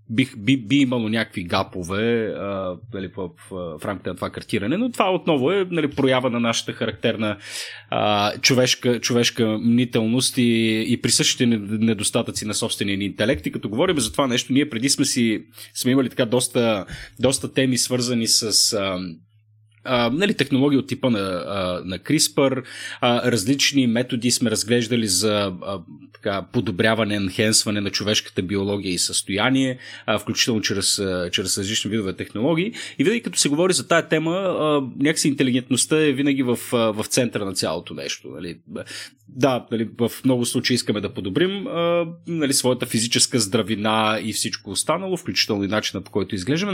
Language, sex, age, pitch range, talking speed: Bulgarian, male, 30-49, 105-125 Hz, 155 wpm